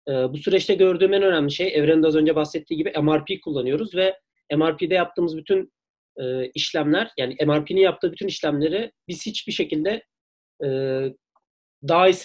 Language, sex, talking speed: Turkish, male, 130 wpm